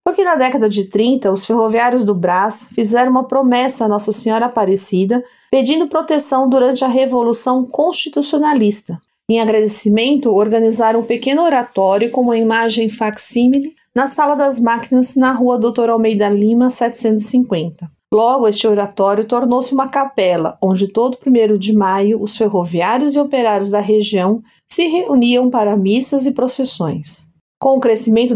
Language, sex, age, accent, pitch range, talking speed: Portuguese, female, 40-59, Brazilian, 210-255 Hz, 145 wpm